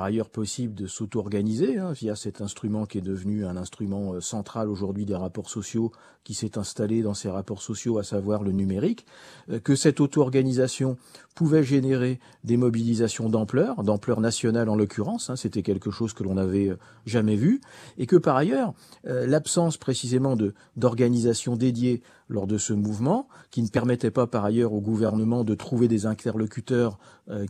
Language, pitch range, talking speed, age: French, 105-125 Hz, 165 wpm, 40-59